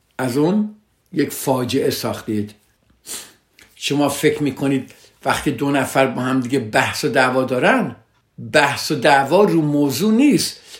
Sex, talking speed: male, 130 wpm